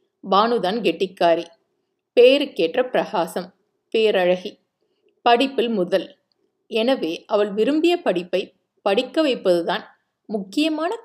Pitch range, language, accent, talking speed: 185-270 Hz, Tamil, native, 75 wpm